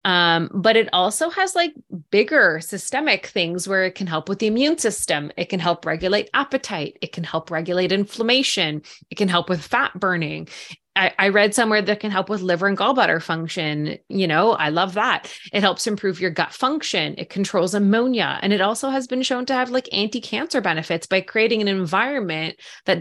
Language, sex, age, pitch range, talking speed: English, female, 20-39, 175-225 Hz, 200 wpm